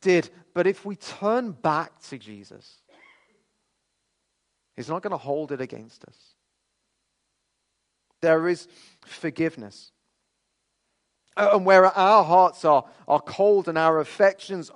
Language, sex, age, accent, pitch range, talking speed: English, male, 40-59, British, 145-185 Hz, 115 wpm